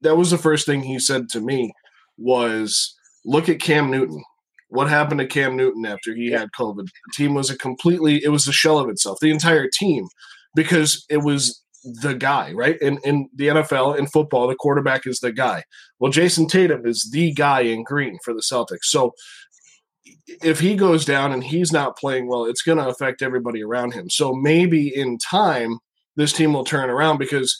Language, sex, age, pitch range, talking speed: English, male, 20-39, 130-160 Hz, 200 wpm